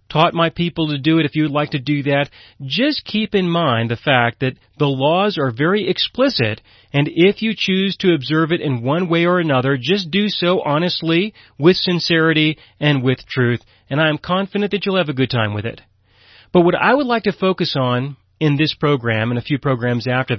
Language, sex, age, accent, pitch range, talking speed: English, male, 40-59, American, 125-160 Hz, 220 wpm